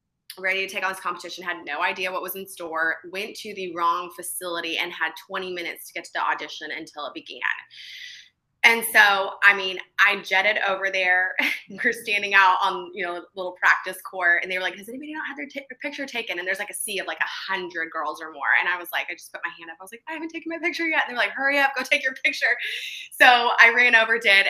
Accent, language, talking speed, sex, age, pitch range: American, English, 260 wpm, female, 20-39, 175-225 Hz